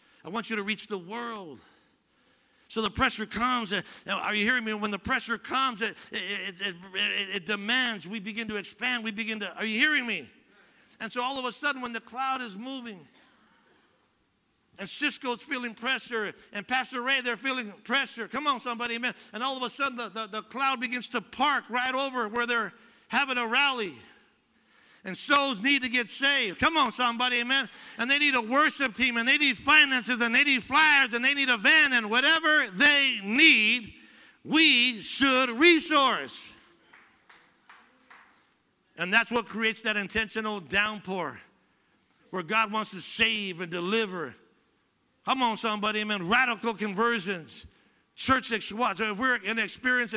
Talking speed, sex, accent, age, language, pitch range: 170 wpm, male, American, 50-69, English, 215-260 Hz